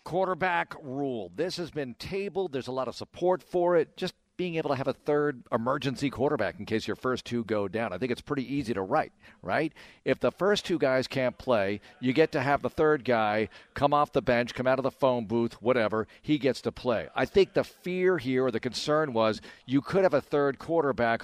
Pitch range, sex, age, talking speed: 115-145 Hz, male, 50-69, 230 wpm